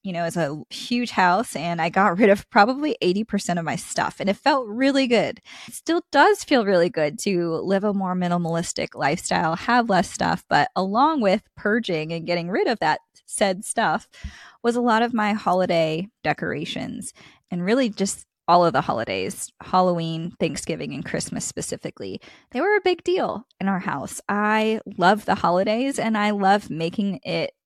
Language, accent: English, American